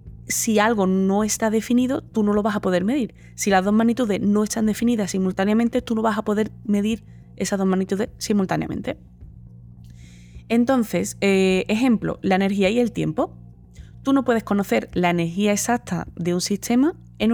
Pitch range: 165-225 Hz